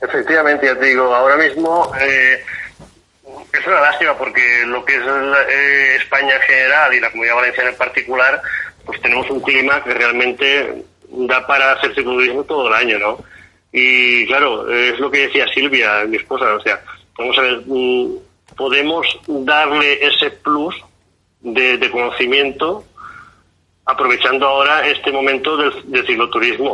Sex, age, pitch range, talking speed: male, 30-49, 130-165 Hz, 150 wpm